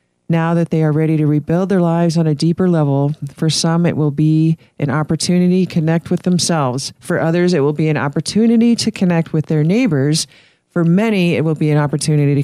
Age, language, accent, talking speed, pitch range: 40-59, English, American, 210 wpm, 150-175 Hz